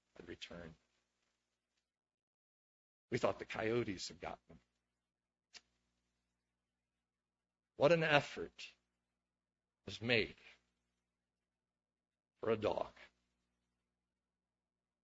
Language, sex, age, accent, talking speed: English, male, 60-79, American, 65 wpm